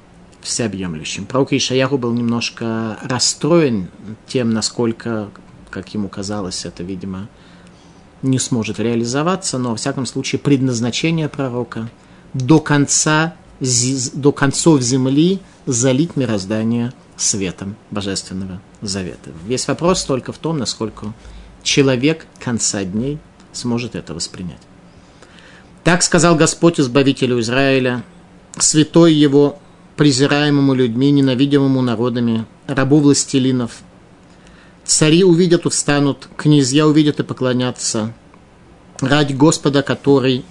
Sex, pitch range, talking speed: male, 115-145 Hz, 100 wpm